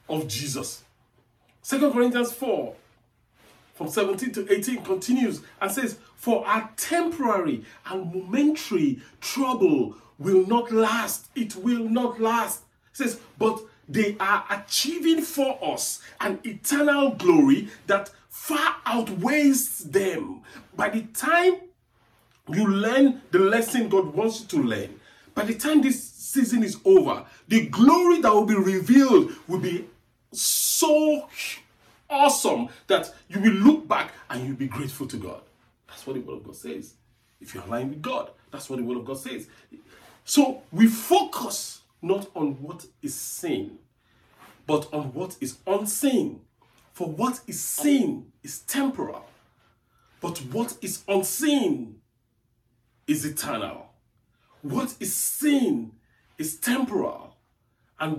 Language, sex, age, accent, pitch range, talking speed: English, male, 50-69, Nigerian, 175-275 Hz, 135 wpm